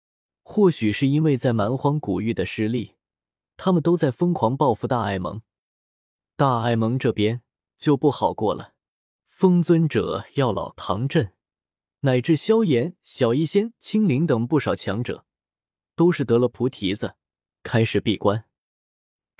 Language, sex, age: Chinese, male, 20-39